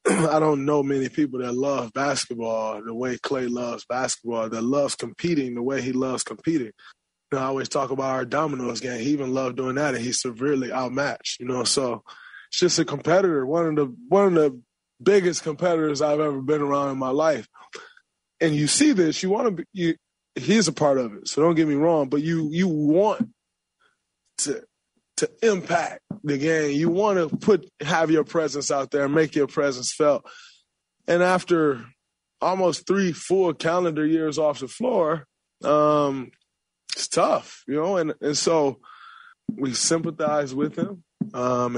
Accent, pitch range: American, 135-165 Hz